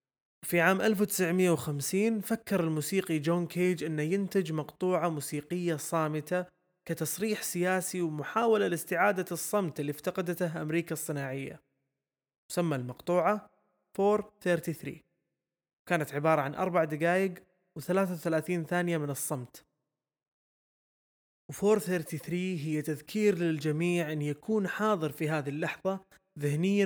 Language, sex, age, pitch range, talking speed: Arabic, male, 20-39, 145-180 Hz, 100 wpm